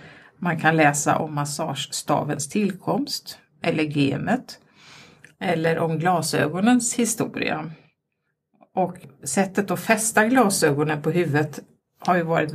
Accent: native